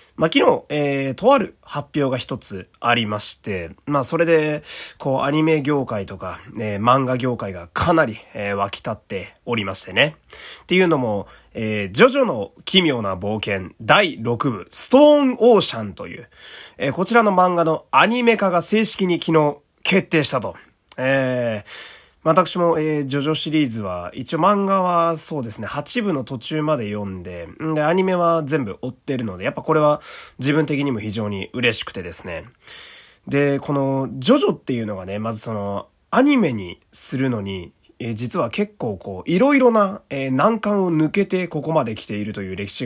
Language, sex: Japanese, male